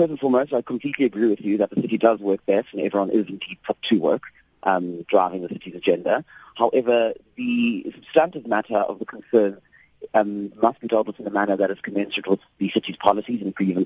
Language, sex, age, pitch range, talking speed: English, male, 30-49, 95-110 Hz, 215 wpm